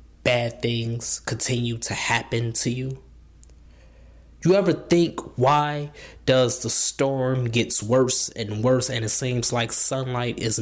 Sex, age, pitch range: male, 20-39, 120-175 Hz